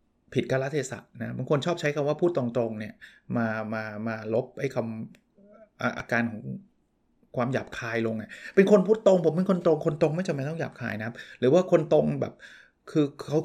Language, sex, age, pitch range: Thai, male, 20-39, 120-165 Hz